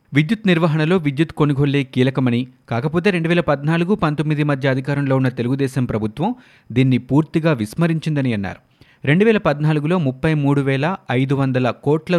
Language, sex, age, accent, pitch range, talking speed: Telugu, male, 30-49, native, 130-155 Hz, 115 wpm